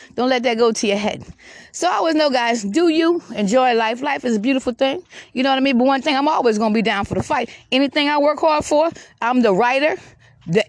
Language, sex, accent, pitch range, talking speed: English, female, American, 230-295 Hz, 265 wpm